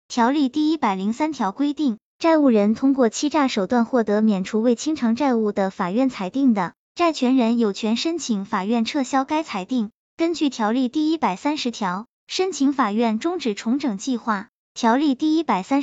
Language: Chinese